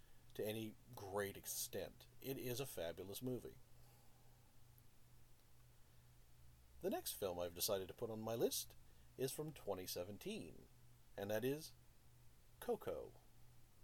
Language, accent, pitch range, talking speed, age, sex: English, American, 100-130 Hz, 115 wpm, 50-69, male